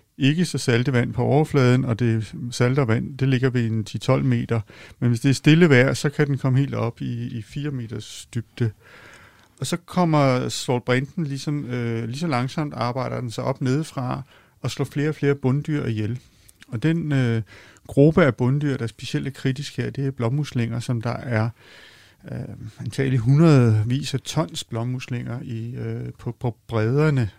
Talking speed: 180 wpm